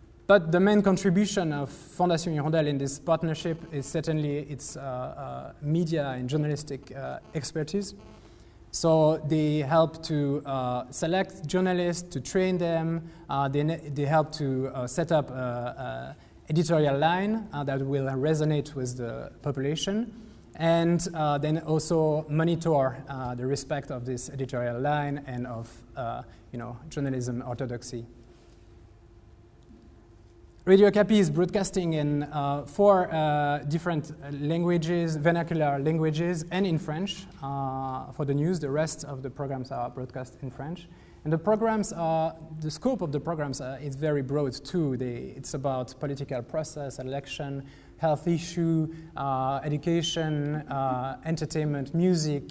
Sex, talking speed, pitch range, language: male, 140 wpm, 135-165 Hz, English